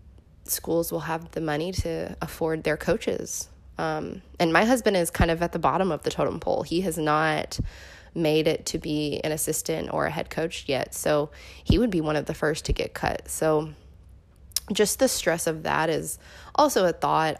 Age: 20-39